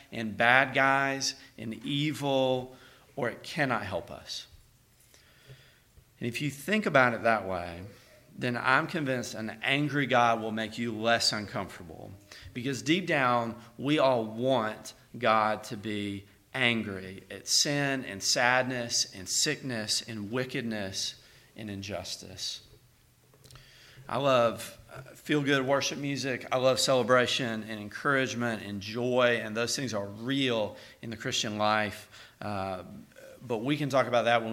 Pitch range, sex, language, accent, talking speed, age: 110-135 Hz, male, English, American, 135 wpm, 40-59